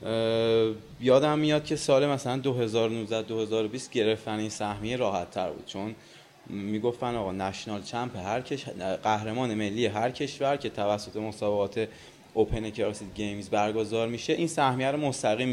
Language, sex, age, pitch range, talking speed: Persian, male, 20-39, 105-135 Hz, 135 wpm